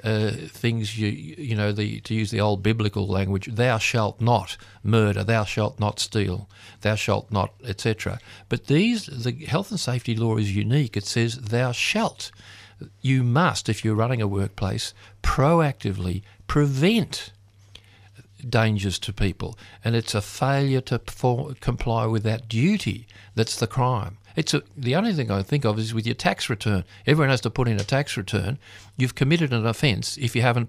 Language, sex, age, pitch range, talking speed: English, male, 50-69, 100-130 Hz, 175 wpm